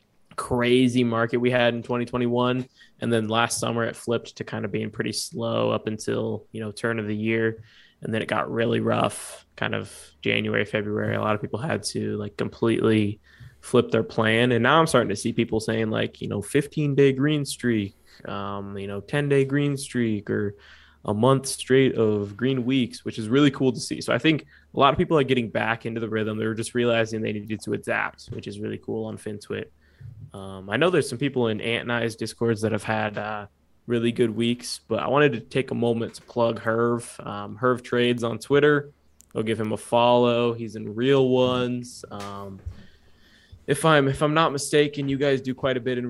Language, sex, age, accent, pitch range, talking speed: English, male, 20-39, American, 110-125 Hz, 210 wpm